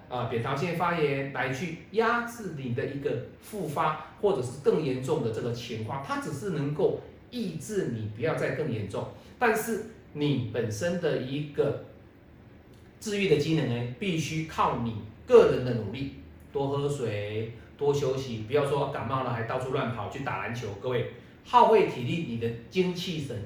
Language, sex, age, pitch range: Chinese, male, 40-59, 120-180 Hz